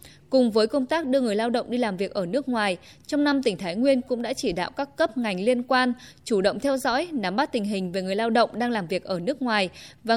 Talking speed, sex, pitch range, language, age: 275 wpm, female, 200-260 Hz, Vietnamese, 10-29